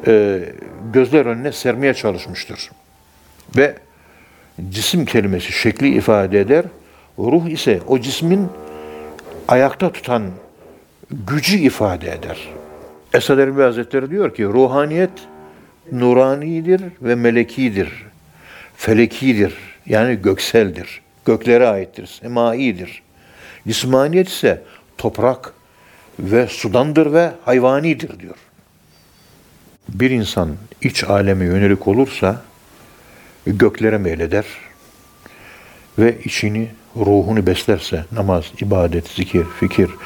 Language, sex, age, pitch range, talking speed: Turkish, male, 60-79, 95-130 Hz, 85 wpm